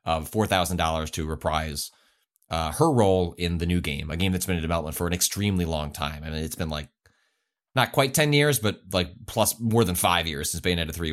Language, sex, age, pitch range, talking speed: English, male, 30-49, 85-110 Hz, 230 wpm